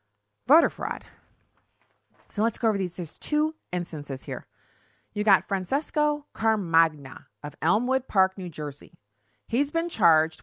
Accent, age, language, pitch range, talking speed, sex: American, 40-59, English, 145-195 Hz, 130 wpm, female